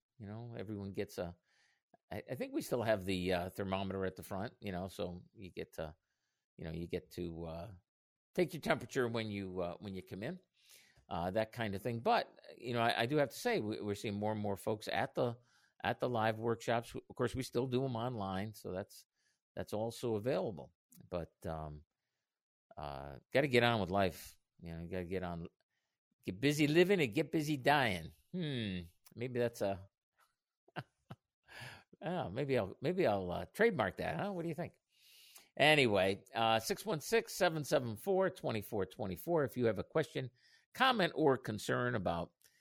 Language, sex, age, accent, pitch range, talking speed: English, male, 50-69, American, 90-125 Hz, 185 wpm